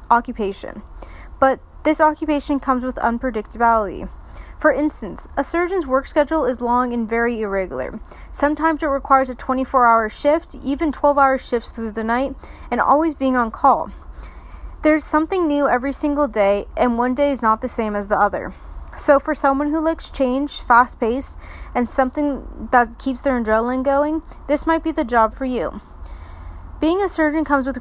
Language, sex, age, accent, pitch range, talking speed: English, female, 30-49, American, 230-290 Hz, 165 wpm